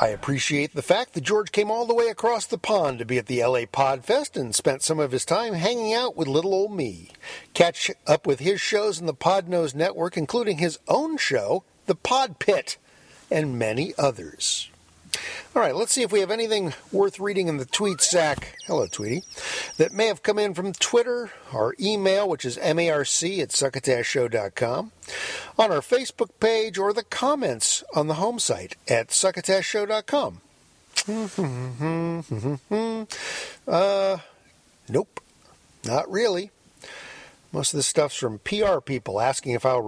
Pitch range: 150-220 Hz